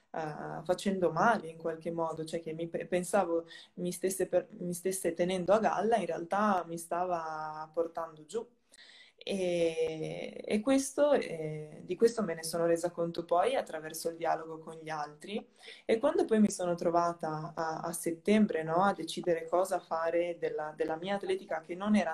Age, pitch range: 20-39, 160-200 Hz